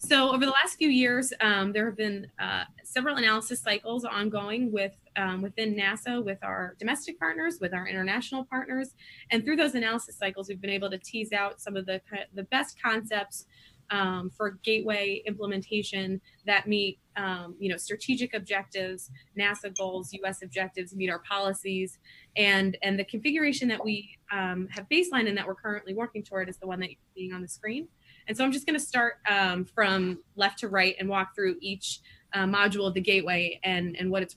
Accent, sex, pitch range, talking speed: American, female, 185-220 Hz, 190 wpm